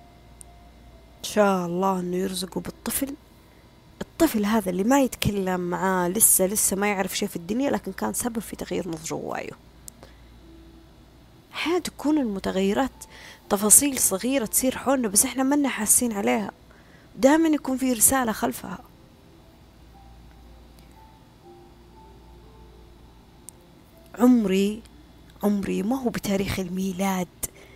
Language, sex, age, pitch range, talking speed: Arabic, female, 30-49, 180-240 Hz, 105 wpm